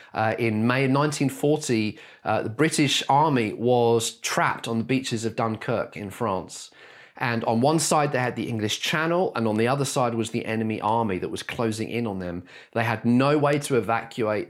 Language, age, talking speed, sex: English, 30-49, 195 wpm, male